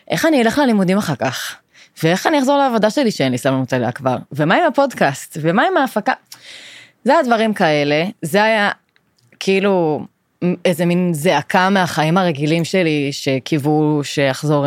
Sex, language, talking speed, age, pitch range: female, Hebrew, 145 wpm, 20-39, 150-205 Hz